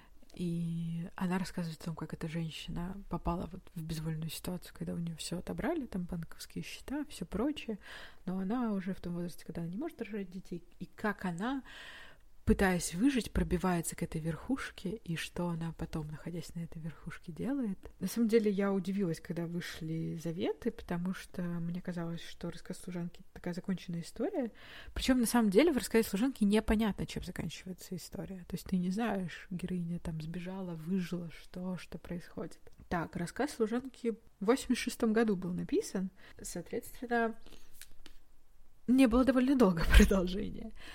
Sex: female